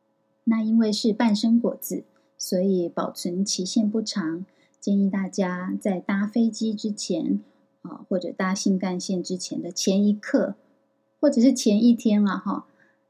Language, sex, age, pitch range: Chinese, female, 20-39, 190-230 Hz